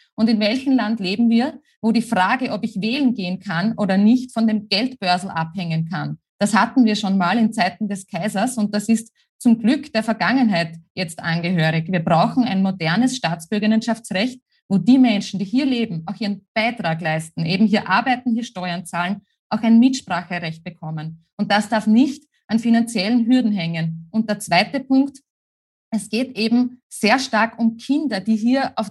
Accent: Austrian